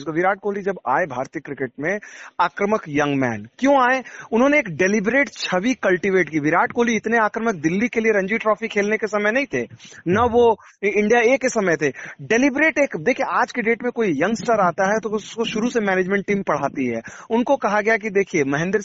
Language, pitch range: Hindi, 175-240 Hz